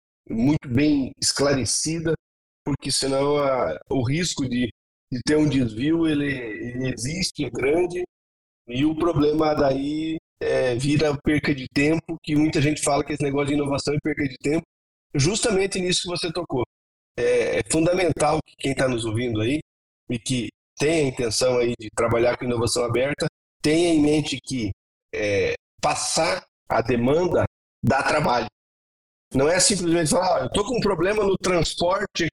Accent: Brazilian